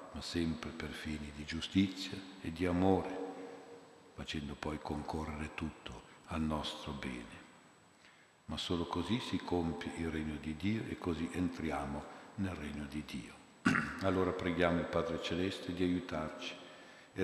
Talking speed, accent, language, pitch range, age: 140 wpm, native, Italian, 75-90 Hz, 50-69